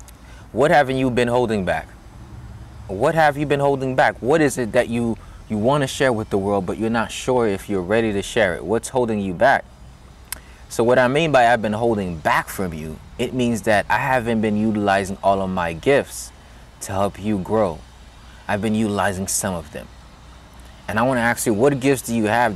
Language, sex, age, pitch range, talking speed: English, male, 20-39, 90-120 Hz, 215 wpm